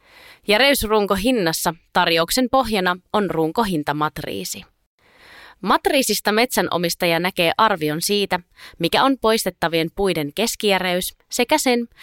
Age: 20-39